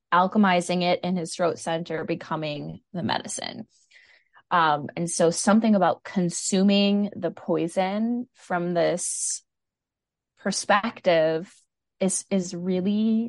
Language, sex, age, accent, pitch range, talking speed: English, female, 20-39, American, 170-200 Hz, 105 wpm